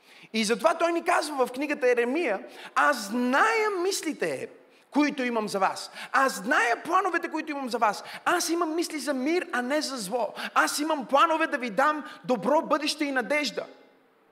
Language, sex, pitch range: Bulgarian, male, 230-315 Hz